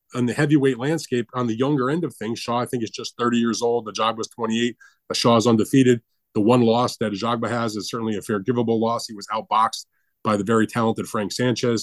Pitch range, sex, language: 110-135 Hz, male, English